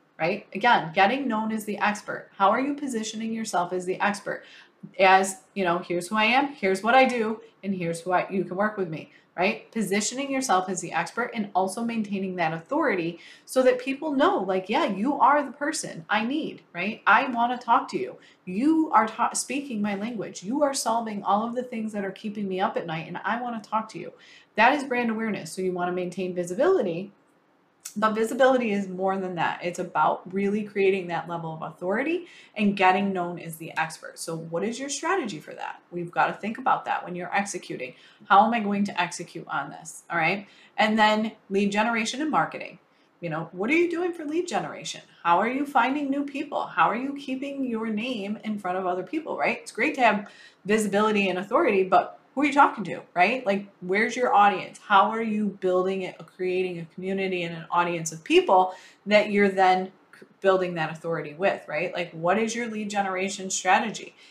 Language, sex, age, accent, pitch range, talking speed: English, female, 30-49, American, 180-225 Hz, 210 wpm